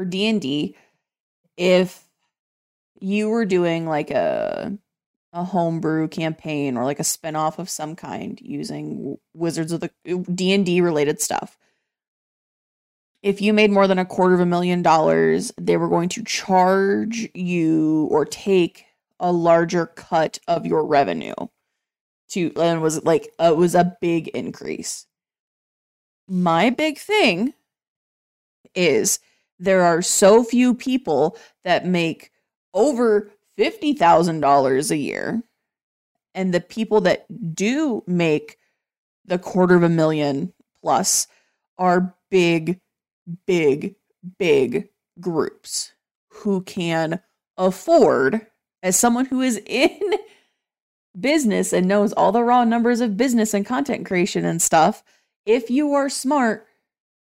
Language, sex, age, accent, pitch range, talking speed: English, female, 20-39, American, 170-225 Hz, 125 wpm